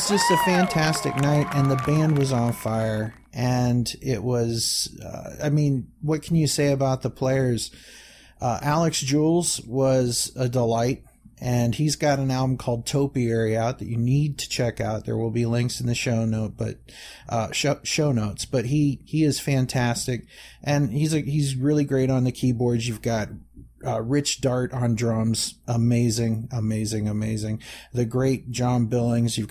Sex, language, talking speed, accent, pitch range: male, English, 175 wpm, American, 115-140 Hz